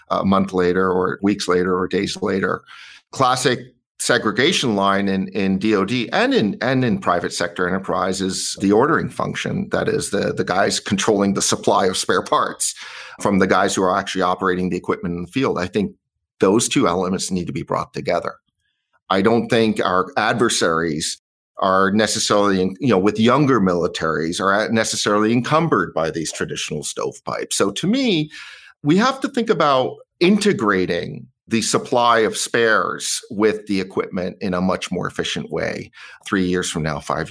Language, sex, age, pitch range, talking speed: English, male, 50-69, 90-115 Hz, 165 wpm